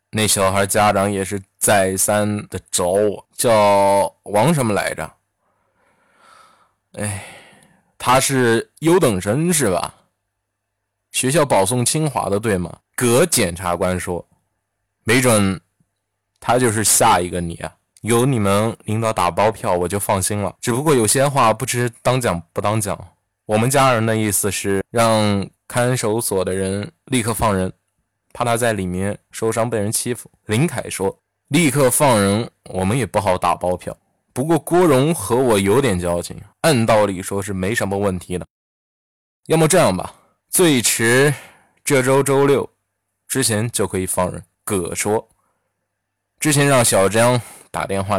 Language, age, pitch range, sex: Chinese, 20-39, 95-120 Hz, male